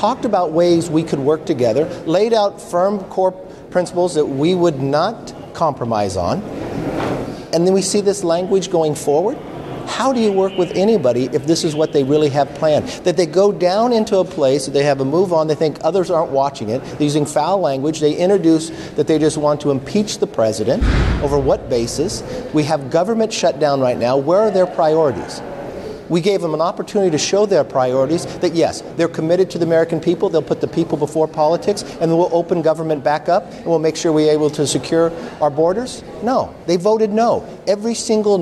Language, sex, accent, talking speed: English, male, American, 205 wpm